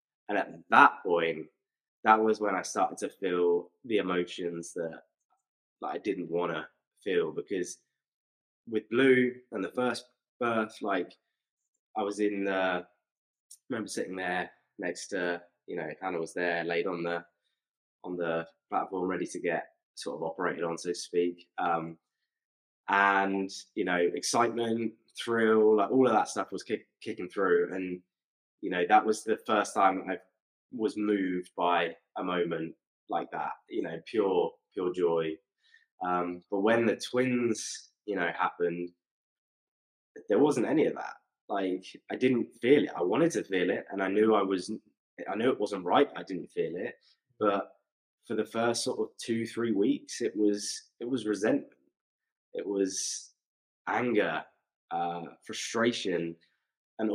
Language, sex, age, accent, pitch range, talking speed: English, male, 20-39, British, 85-115 Hz, 160 wpm